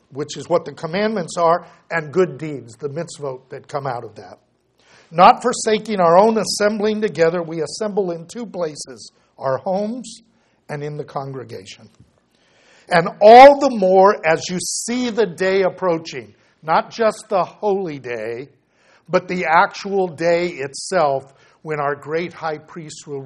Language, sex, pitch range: English, male, 135-180 Hz